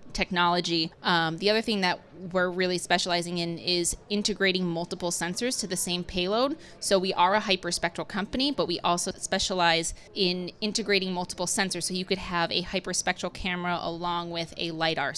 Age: 20-39